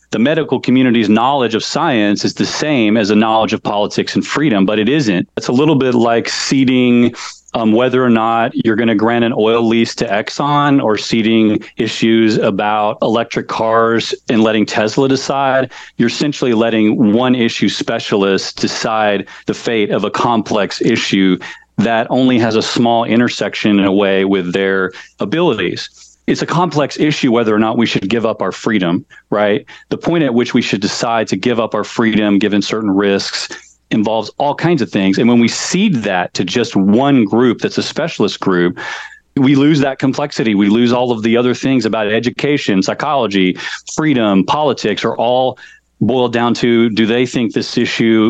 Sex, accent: male, American